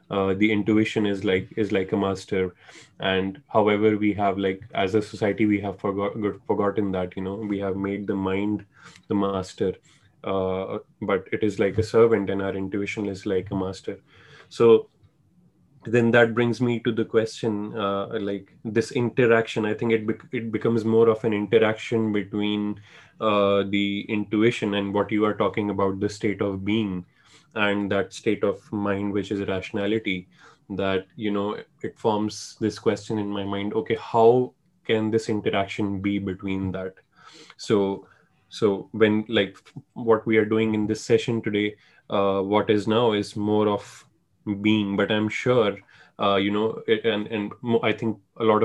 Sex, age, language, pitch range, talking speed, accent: male, 20-39, English, 100-110 Hz, 175 wpm, Indian